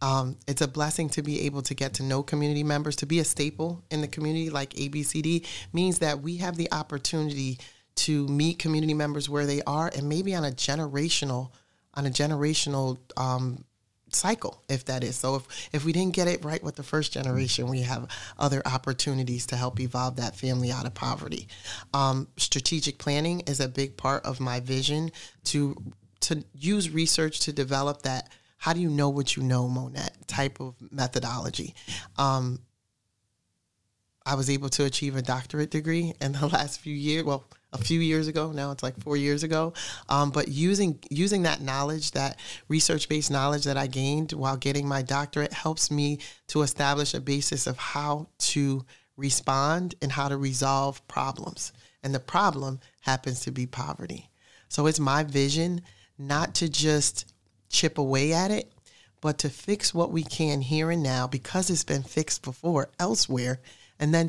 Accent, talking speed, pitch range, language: American, 180 wpm, 130-155 Hz, English